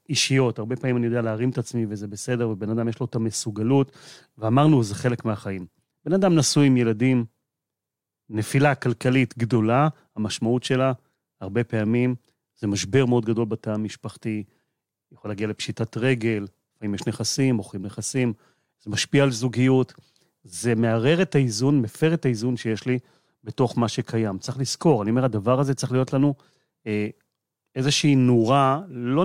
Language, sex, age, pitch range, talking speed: Hebrew, male, 30-49, 110-135 Hz, 155 wpm